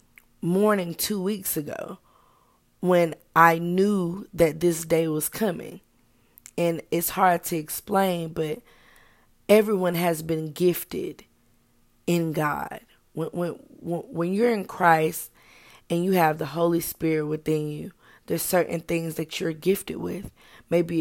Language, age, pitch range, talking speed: English, 20-39, 150-170 Hz, 130 wpm